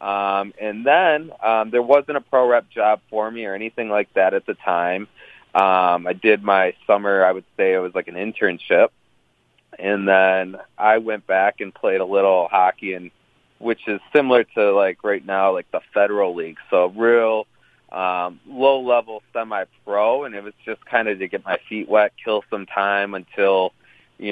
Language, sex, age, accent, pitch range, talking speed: English, male, 30-49, American, 90-110 Hz, 190 wpm